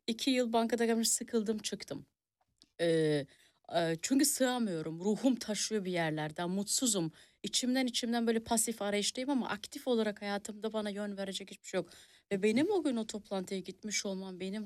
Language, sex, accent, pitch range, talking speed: Turkish, female, native, 180-240 Hz, 155 wpm